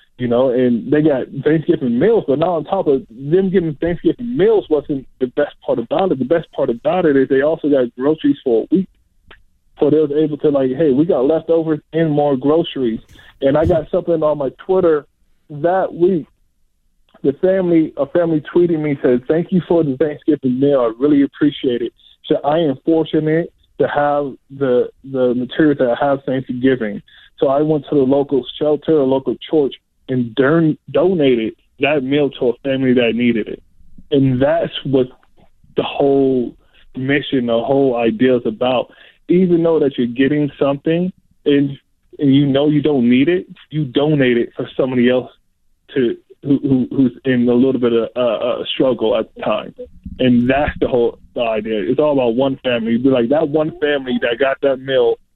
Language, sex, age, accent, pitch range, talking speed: English, male, 20-39, American, 130-160 Hz, 190 wpm